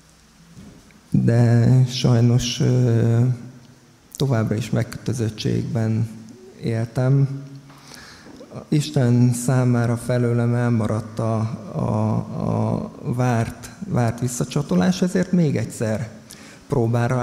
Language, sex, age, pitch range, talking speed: Hungarian, male, 50-69, 115-135 Hz, 70 wpm